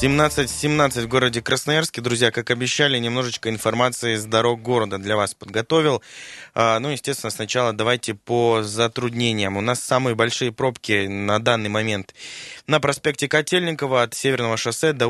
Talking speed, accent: 150 wpm, native